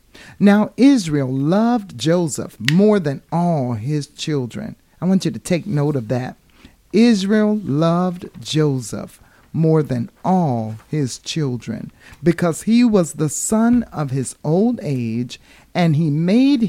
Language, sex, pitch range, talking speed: English, male, 140-190 Hz, 135 wpm